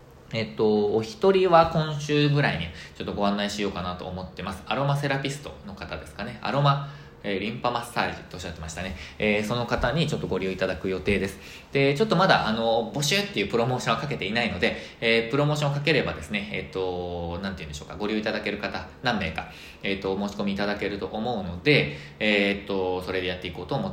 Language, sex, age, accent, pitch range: Japanese, male, 20-39, native, 95-145 Hz